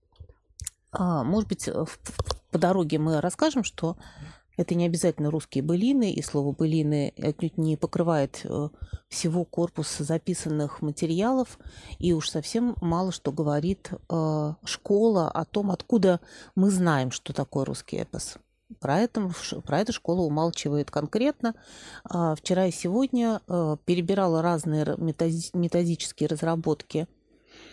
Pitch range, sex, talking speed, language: 155-205 Hz, female, 110 wpm, Russian